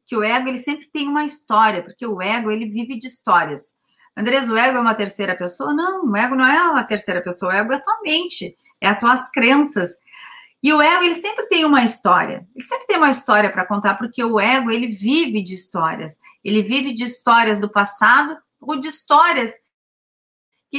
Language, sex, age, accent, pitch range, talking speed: Portuguese, female, 40-59, Brazilian, 215-300 Hz, 210 wpm